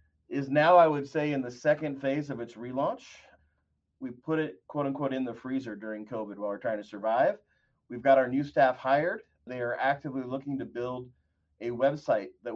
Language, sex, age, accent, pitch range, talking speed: English, male, 30-49, American, 115-140 Hz, 200 wpm